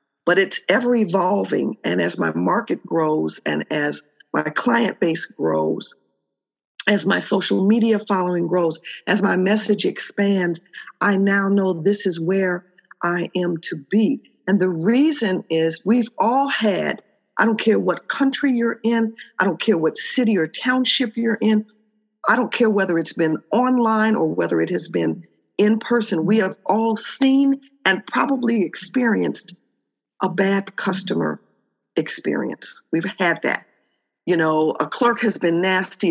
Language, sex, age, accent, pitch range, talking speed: English, female, 50-69, American, 170-220 Hz, 155 wpm